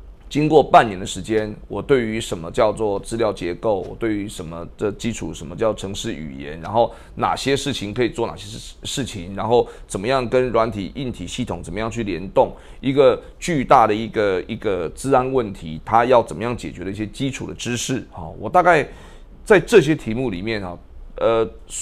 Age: 30-49